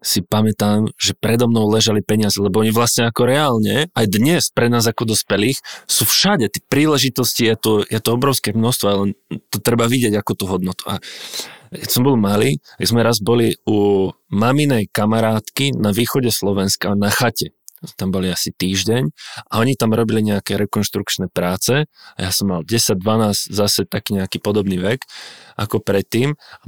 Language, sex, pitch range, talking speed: Czech, male, 100-120 Hz, 170 wpm